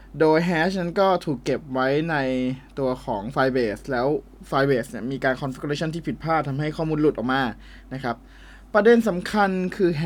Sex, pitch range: male, 130-175 Hz